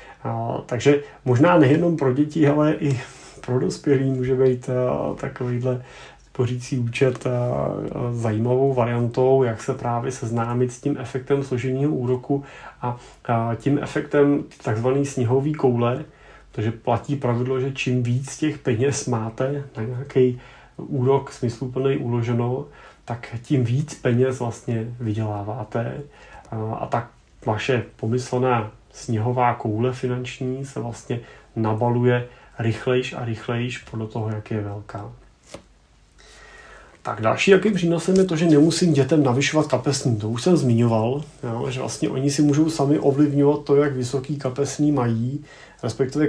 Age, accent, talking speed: 30-49, native, 135 wpm